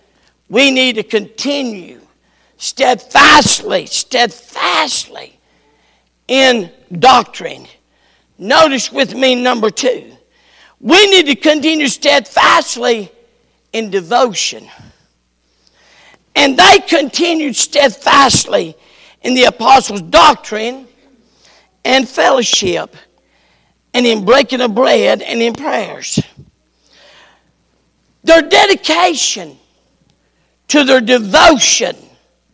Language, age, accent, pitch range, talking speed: English, 50-69, American, 215-310 Hz, 80 wpm